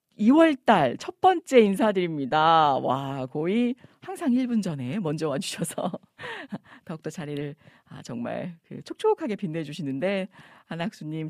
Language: Korean